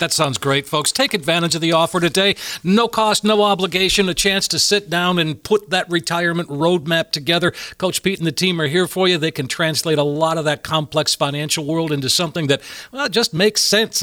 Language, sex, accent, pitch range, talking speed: English, male, American, 160-215 Hz, 220 wpm